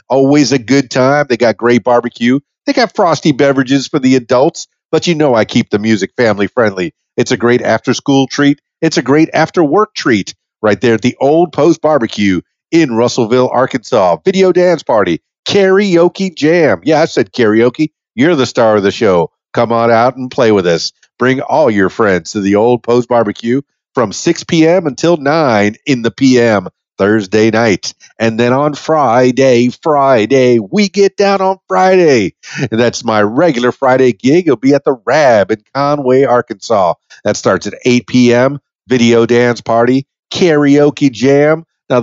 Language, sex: English, male